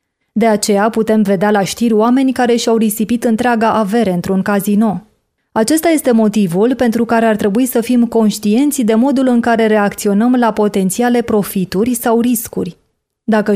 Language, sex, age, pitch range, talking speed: Hungarian, female, 20-39, 205-240 Hz, 155 wpm